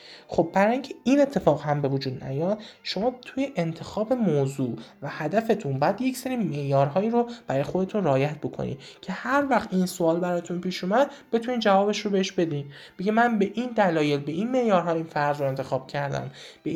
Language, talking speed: Persian, 180 wpm